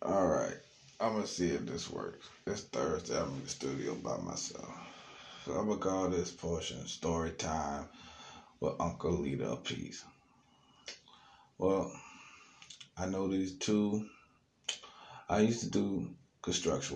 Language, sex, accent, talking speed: English, male, American, 140 wpm